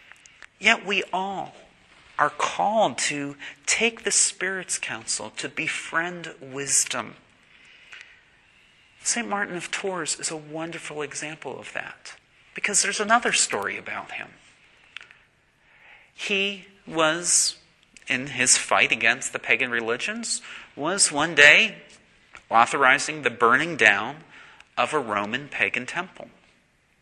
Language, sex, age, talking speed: English, male, 40-59, 110 wpm